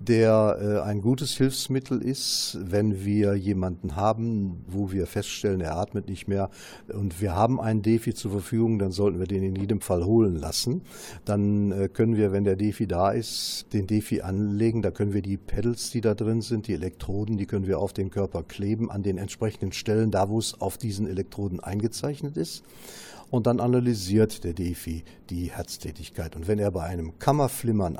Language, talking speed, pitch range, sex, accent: German, 185 wpm, 95-115 Hz, male, German